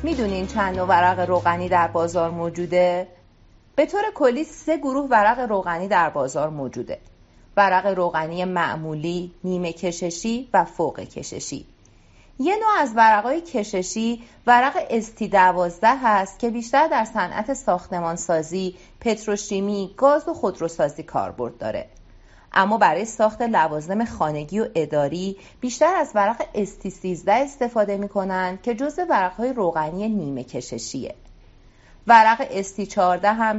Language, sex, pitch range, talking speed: Persian, female, 175-235 Hz, 125 wpm